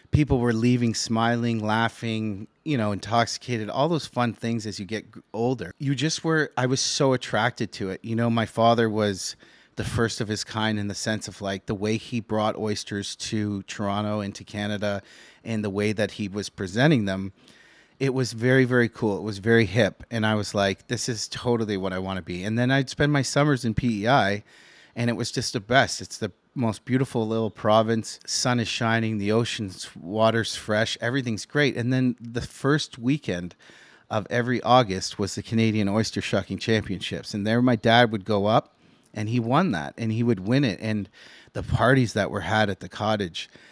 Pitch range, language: 105-120 Hz, English